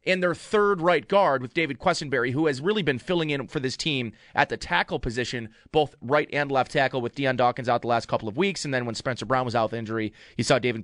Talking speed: 260 wpm